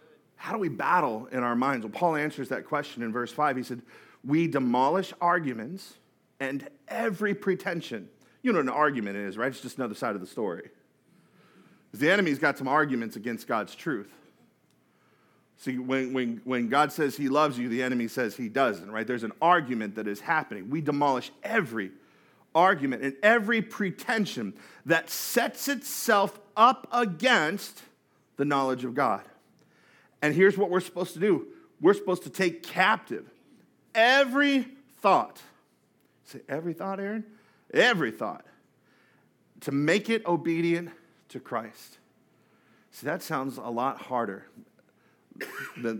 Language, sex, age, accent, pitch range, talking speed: English, male, 40-59, American, 125-200 Hz, 150 wpm